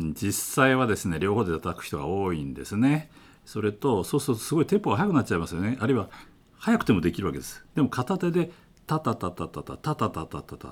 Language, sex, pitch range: Japanese, male, 90-135 Hz